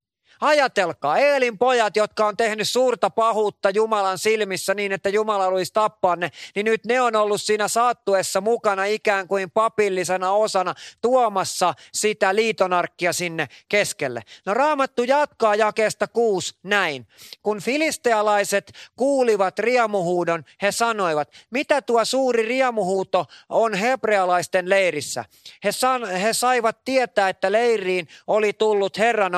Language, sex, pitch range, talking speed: Finnish, male, 180-225 Hz, 125 wpm